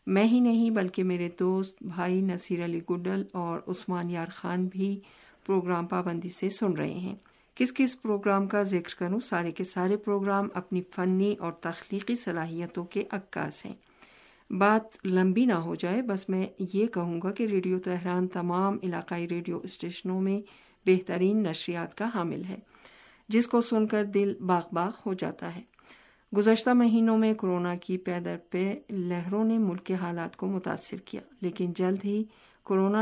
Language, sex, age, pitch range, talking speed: Urdu, female, 50-69, 175-205 Hz, 165 wpm